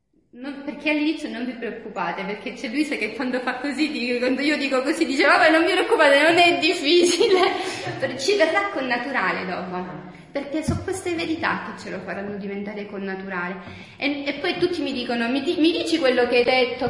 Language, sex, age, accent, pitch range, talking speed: Italian, female, 30-49, native, 200-315 Hz, 200 wpm